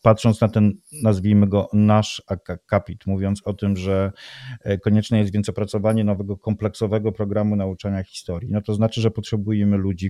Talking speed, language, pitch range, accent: 155 wpm, Polish, 100-115 Hz, native